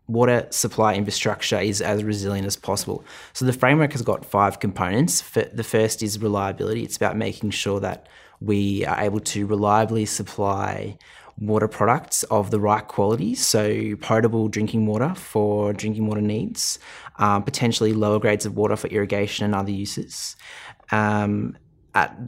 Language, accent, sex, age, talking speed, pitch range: English, Australian, male, 20-39, 150 wpm, 105-115 Hz